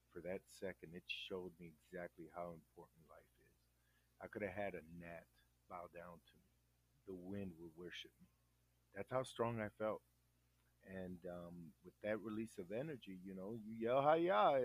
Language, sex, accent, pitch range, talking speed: English, male, American, 85-105 Hz, 170 wpm